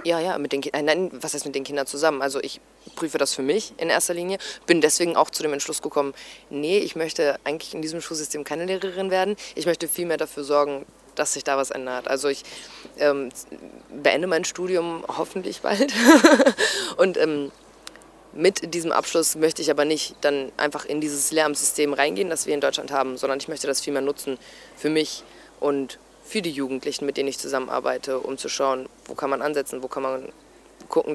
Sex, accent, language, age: female, German, English, 20-39